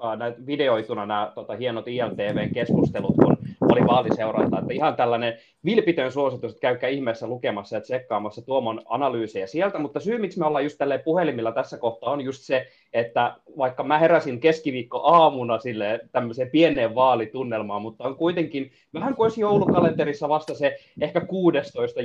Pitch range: 120-160 Hz